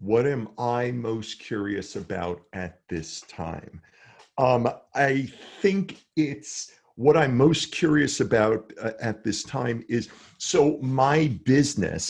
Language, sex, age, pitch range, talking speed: English, male, 50-69, 110-140 Hz, 130 wpm